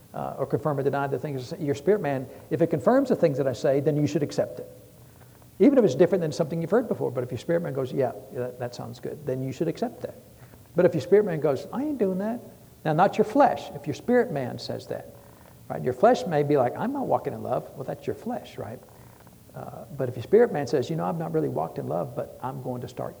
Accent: American